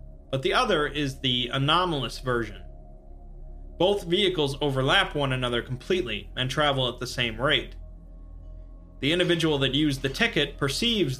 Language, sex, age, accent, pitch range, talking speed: English, male, 30-49, American, 95-145 Hz, 140 wpm